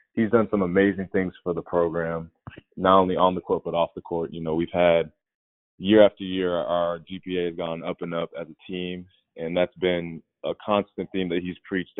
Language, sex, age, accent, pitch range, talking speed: English, male, 20-39, American, 80-95 Hz, 215 wpm